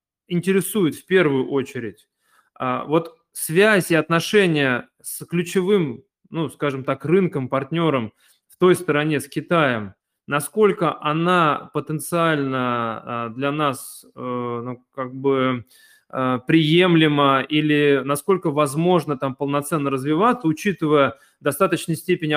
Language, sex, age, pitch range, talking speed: Russian, male, 20-39, 135-175 Hz, 100 wpm